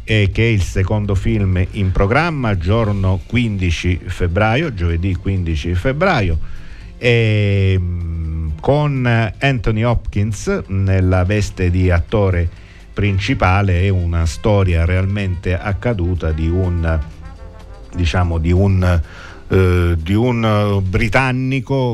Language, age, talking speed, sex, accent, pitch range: Italian, 50-69, 100 wpm, male, native, 95-110 Hz